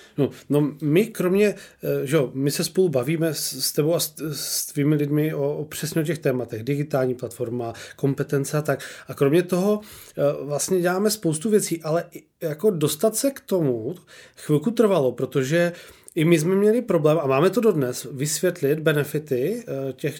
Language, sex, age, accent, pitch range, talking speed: Czech, male, 30-49, native, 145-185 Hz, 170 wpm